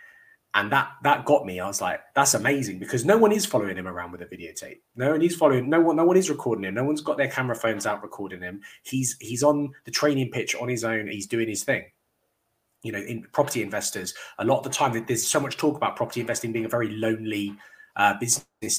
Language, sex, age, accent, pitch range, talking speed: English, male, 20-39, British, 110-145 Hz, 245 wpm